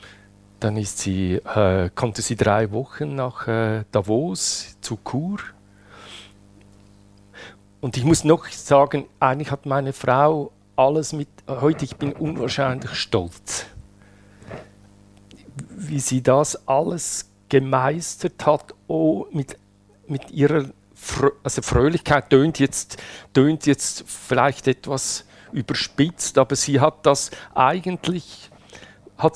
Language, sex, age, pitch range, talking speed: German, male, 50-69, 105-140 Hz, 110 wpm